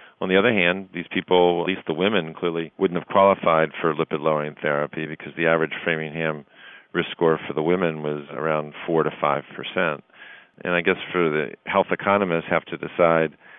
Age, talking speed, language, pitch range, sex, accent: 40-59, 190 wpm, English, 75-85 Hz, male, American